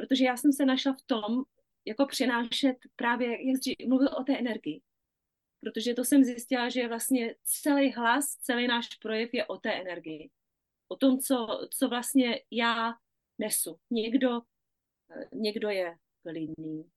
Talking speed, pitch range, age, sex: 145 wpm, 215-265 Hz, 30-49, female